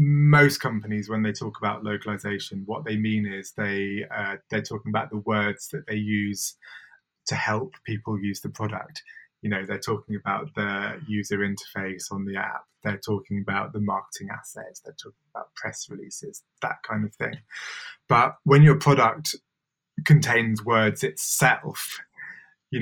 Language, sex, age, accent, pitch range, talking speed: English, male, 20-39, British, 105-140 Hz, 160 wpm